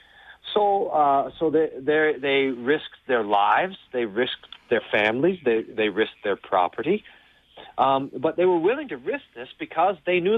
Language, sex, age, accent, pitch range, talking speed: English, male, 40-59, American, 125-195 Hz, 160 wpm